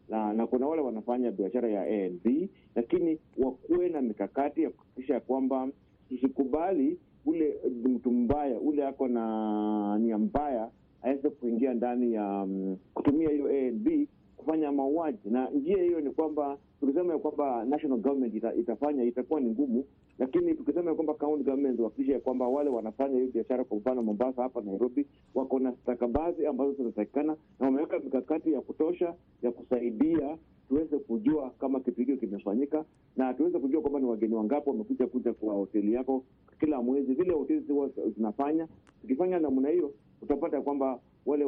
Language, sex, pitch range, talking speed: Swahili, male, 115-150 Hz, 155 wpm